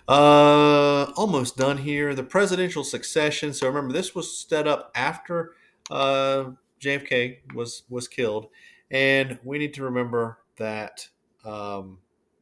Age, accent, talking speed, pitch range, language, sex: 30-49, American, 125 wpm, 100-135 Hz, English, male